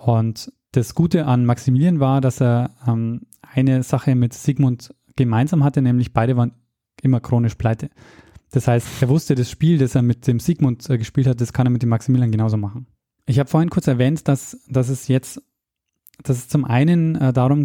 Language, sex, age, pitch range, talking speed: German, male, 10-29, 120-140 Hz, 195 wpm